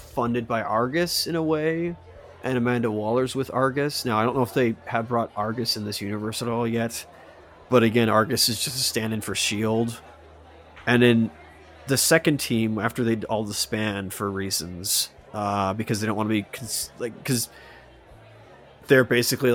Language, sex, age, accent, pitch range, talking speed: English, male, 30-49, American, 100-120 Hz, 185 wpm